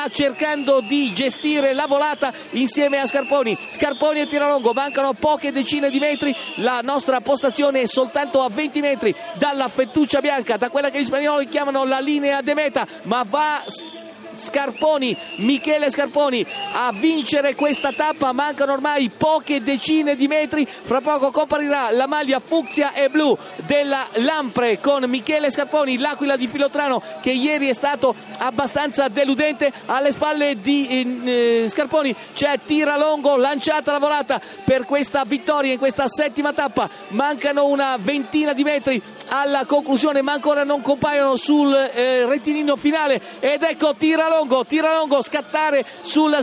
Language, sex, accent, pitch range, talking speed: Italian, male, native, 270-300 Hz, 140 wpm